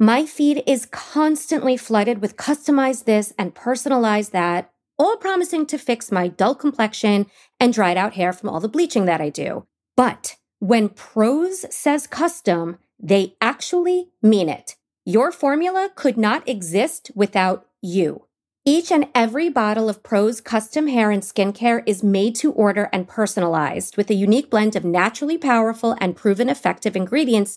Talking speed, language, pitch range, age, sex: 155 wpm, English, 205-290 Hz, 30-49, female